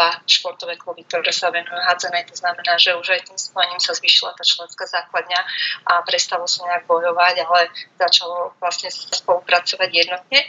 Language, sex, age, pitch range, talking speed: Slovak, female, 20-39, 175-185 Hz, 160 wpm